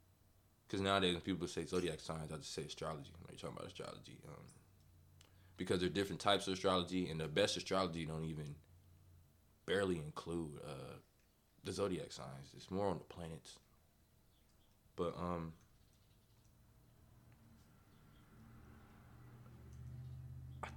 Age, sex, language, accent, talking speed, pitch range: 20-39, male, English, American, 125 wpm, 85-105 Hz